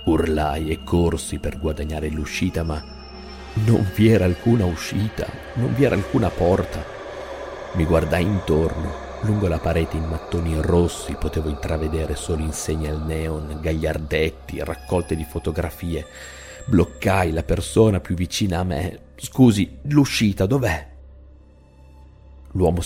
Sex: male